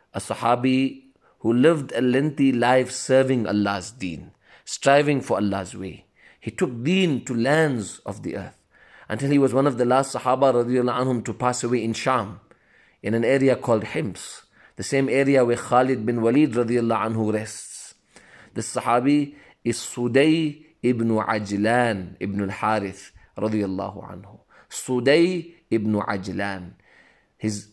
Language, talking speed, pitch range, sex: English, 140 wpm, 105-135 Hz, male